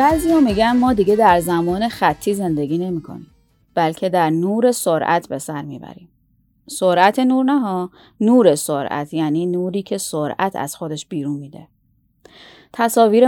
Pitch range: 170-195 Hz